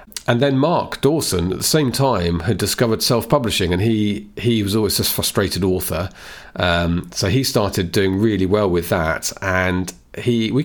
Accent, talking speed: British, 175 wpm